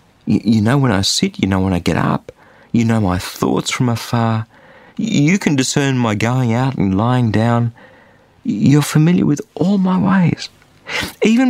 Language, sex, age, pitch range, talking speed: English, male, 50-69, 110-170 Hz, 170 wpm